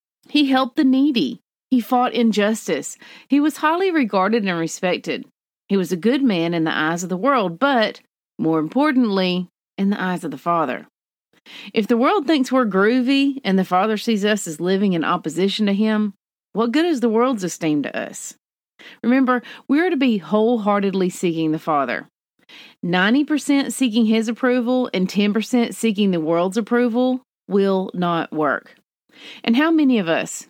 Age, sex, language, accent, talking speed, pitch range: 40-59, female, English, American, 165 wpm, 170-250 Hz